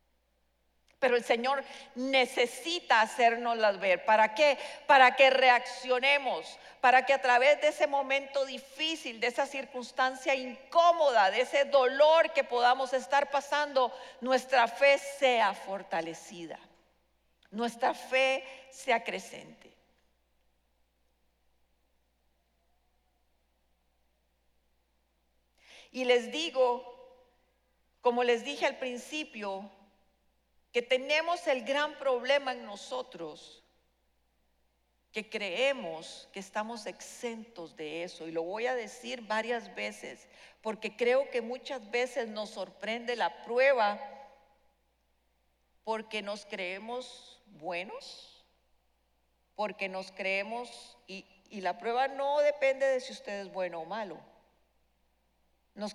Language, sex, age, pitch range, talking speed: Spanish, female, 40-59, 170-265 Hz, 105 wpm